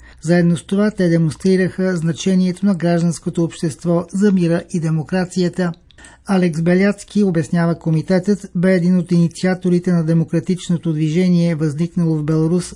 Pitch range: 165-180 Hz